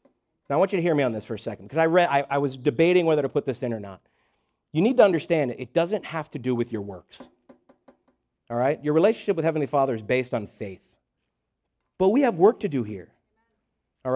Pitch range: 130-205 Hz